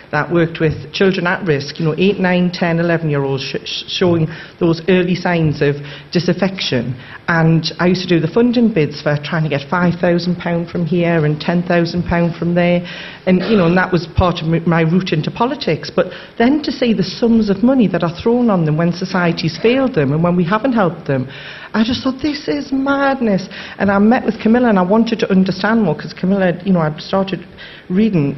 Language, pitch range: English, 155-190 Hz